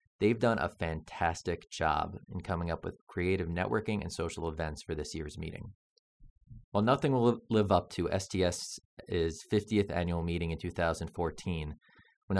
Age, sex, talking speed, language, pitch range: 30-49, male, 150 wpm, English, 80-105 Hz